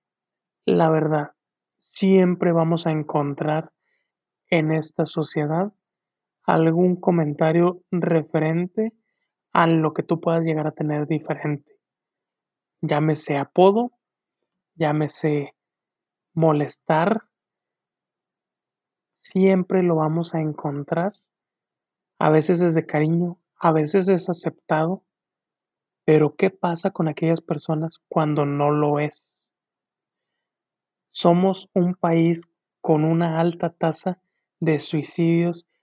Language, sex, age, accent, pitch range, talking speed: English, male, 30-49, Mexican, 155-180 Hz, 95 wpm